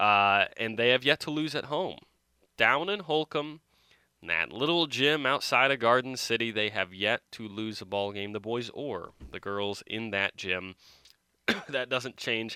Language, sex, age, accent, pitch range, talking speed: English, male, 20-39, American, 100-120 Hz, 180 wpm